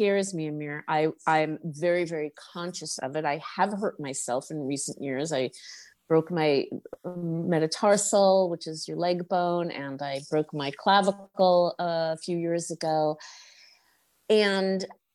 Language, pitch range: English, 155-190 Hz